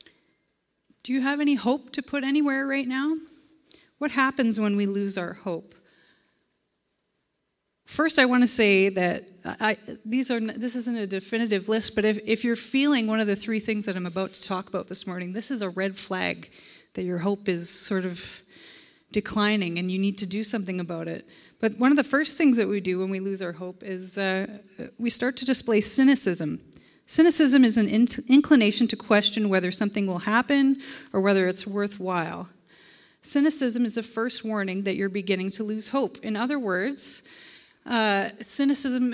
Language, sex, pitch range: English, female, 195-250 Hz